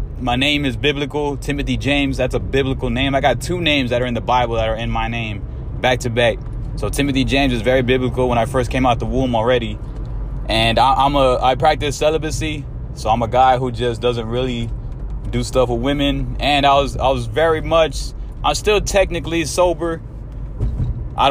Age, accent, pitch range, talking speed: 20-39, American, 115-140 Hz, 200 wpm